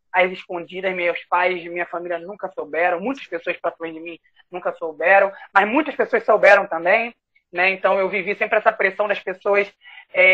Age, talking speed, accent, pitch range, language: 20-39, 180 wpm, Brazilian, 185-240 Hz, Portuguese